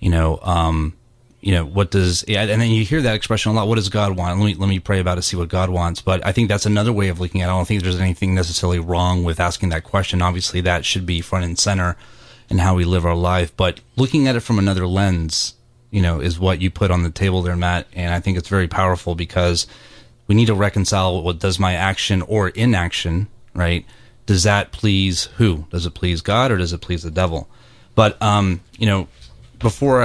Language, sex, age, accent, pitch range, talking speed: English, male, 30-49, American, 90-110 Hz, 240 wpm